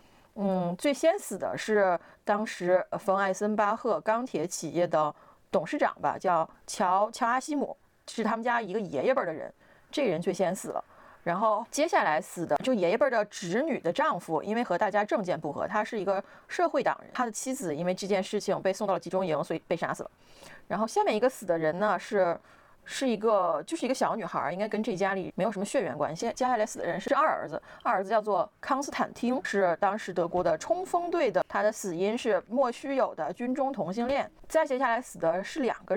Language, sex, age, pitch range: Chinese, female, 30-49, 190-245 Hz